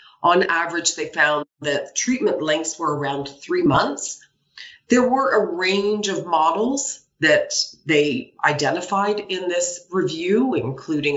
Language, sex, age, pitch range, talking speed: Polish, female, 40-59, 155-210 Hz, 130 wpm